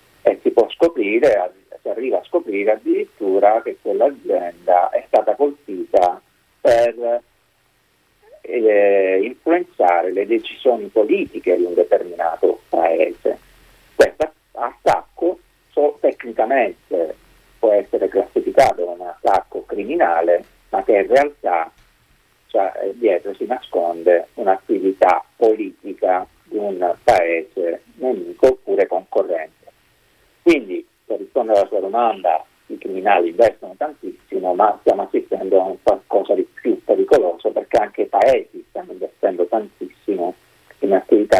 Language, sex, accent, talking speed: Italian, male, native, 110 wpm